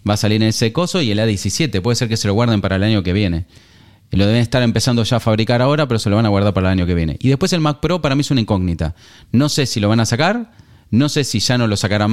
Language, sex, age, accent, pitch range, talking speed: Spanish, male, 30-49, Argentinian, 105-140 Hz, 310 wpm